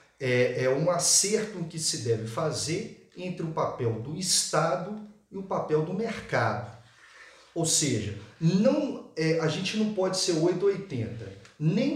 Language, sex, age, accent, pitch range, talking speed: Portuguese, male, 50-69, Brazilian, 125-185 Hz, 145 wpm